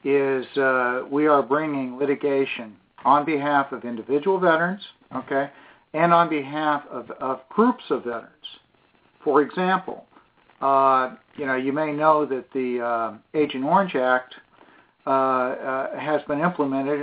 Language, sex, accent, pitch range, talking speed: English, male, American, 130-165 Hz, 135 wpm